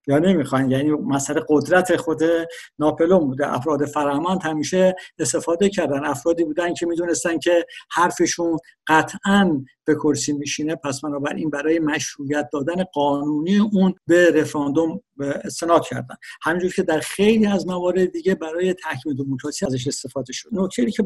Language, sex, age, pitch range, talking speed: Persian, male, 60-79, 145-180 Hz, 140 wpm